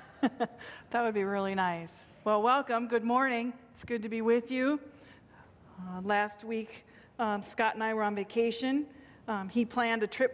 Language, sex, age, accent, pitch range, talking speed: English, female, 40-59, American, 205-240 Hz, 175 wpm